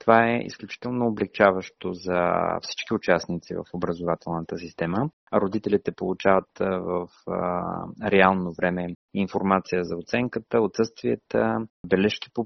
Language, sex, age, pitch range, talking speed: Bulgarian, male, 30-49, 95-115 Hz, 100 wpm